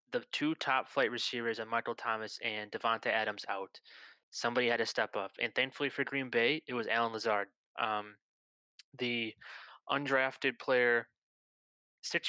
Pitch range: 115-130 Hz